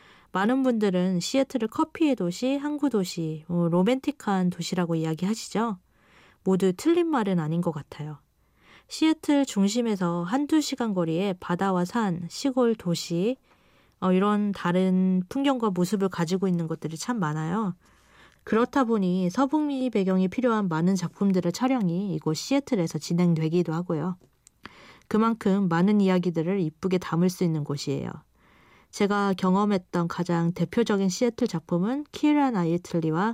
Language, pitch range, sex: Korean, 170-235 Hz, female